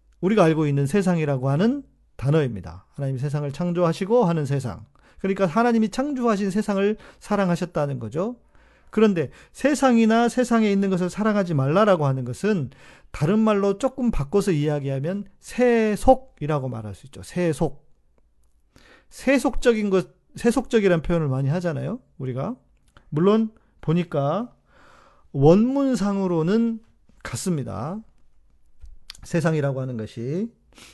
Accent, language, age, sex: native, Korean, 40-59, male